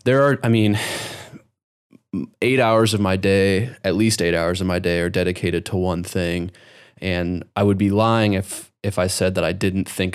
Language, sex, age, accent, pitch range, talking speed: English, male, 20-39, American, 90-105 Hz, 200 wpm